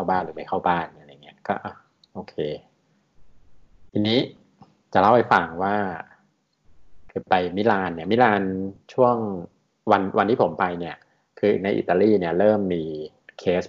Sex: male